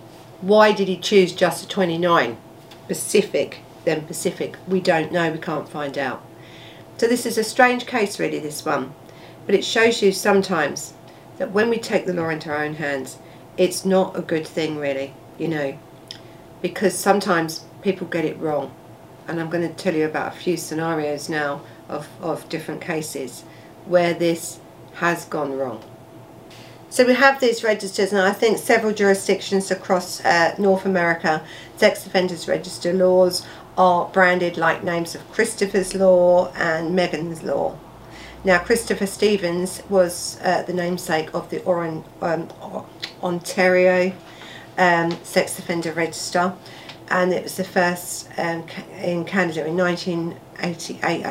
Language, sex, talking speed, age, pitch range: English, female, 150 wpm, 50-69, 165-190 Hz